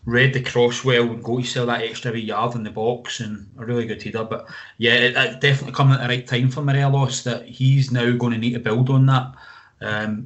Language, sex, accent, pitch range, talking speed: English, male, British, 115-135 Hz, 245 wpm